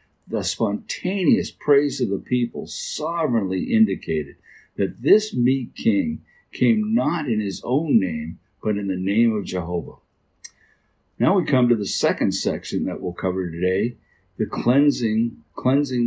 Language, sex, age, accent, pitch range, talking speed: English, male, 60-79, American, 95-130 Hz, 140 wpm